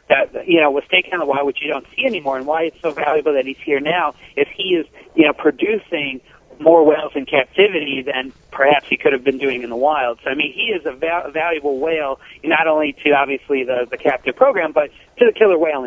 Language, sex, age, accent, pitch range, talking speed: English, male, 40-59, American, 135-165 Hz, 240 wpm